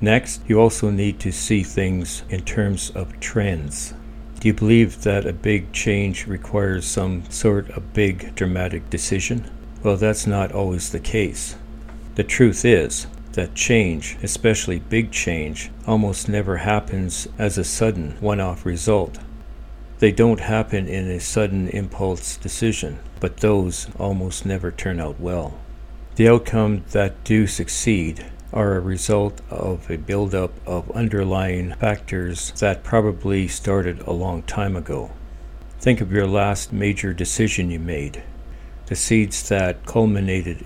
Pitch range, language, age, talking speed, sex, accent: 90-105 Hz, English, 60-79, 140 wpm, male, American